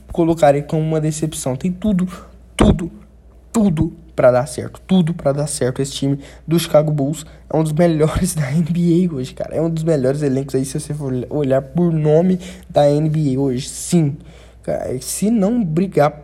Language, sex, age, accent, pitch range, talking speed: Portuguese, male, 20-39, Brazilian, 135-175 Hz, 175 wpm